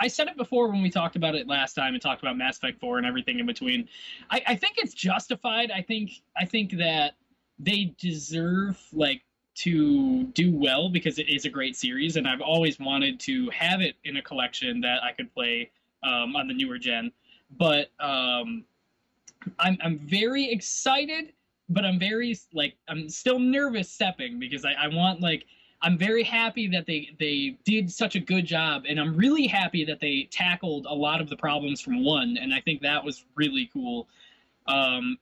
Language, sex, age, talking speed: English, male, 20-39, 195 wpm